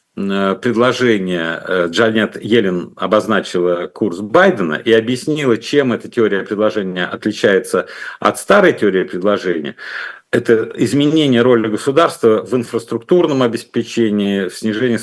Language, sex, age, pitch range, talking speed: Russian, male, 50-69, 105-130 Hz, 100 wpm